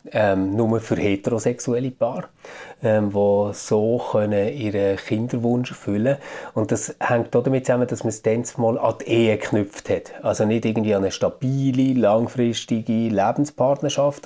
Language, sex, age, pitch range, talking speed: German, male, 30-49, 105-135 Hz, 155 wpm